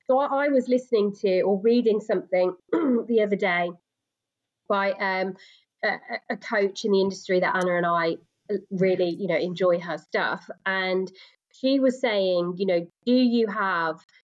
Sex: female